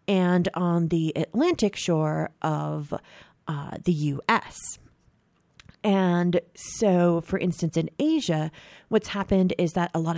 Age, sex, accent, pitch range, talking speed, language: 30-49, female, American, 155-205 Hz, 125 wpm, English